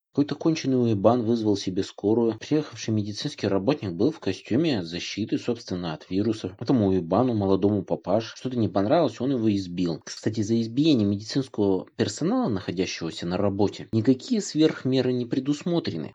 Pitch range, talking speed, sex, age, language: 100-135 Hz, 140 wpm, male, 20-39, Russian